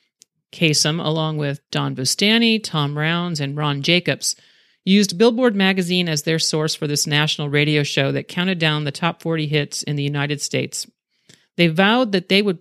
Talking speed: 175 wpm